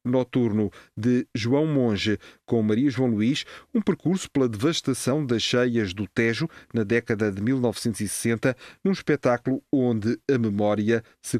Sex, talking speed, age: male, 135 wpm, 40-59